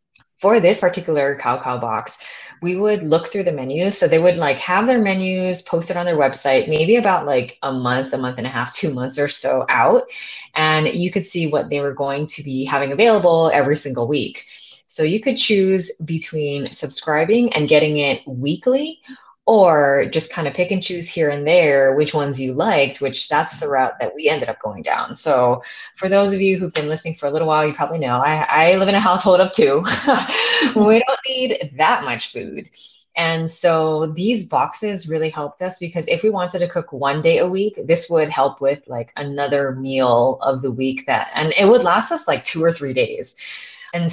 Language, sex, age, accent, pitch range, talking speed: English, female, 20-39, American, 140-185 Hz, 210 wpm